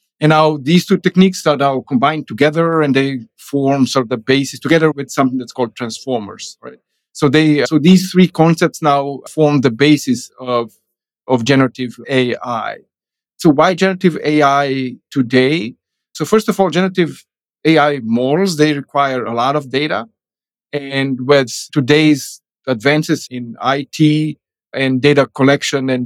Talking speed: 150 wpm